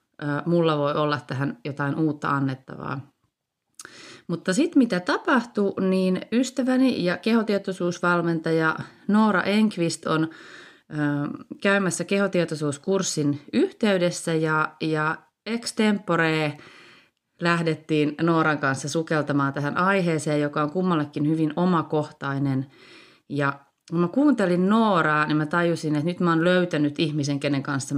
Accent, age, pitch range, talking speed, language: native, 30-49, 145-180 Hz, 105 wpm, Finnish